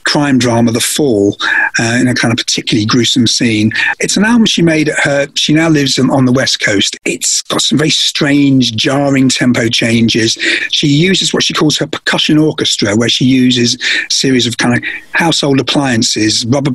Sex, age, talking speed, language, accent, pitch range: male, 50-69, 195 wpm, English, British, 125-165 Hz